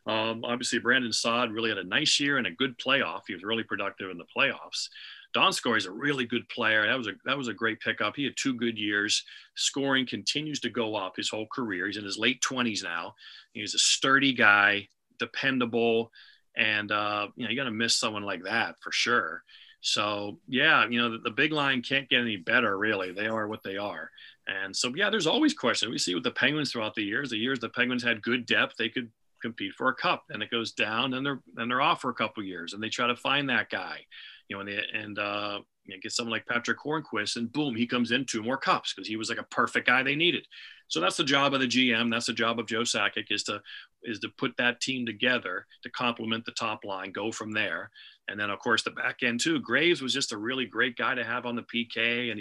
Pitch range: 110-125 Hz